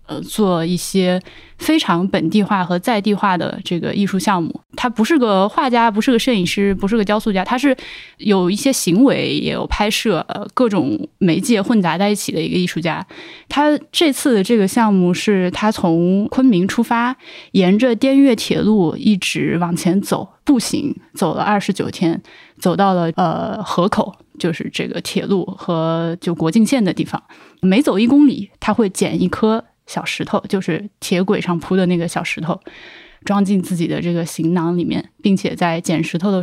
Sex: female